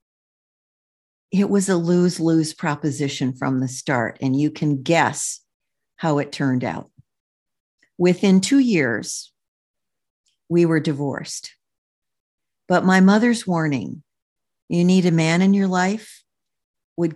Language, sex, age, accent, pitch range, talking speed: English, female, 50-69, American, 150-195 Hz, 120 wpm